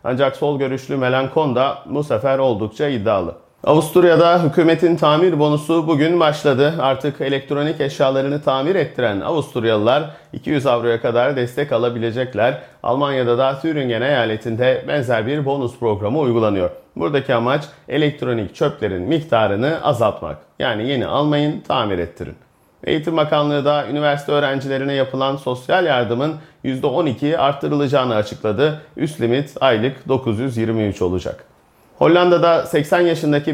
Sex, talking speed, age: male, 115 wpm, 40-59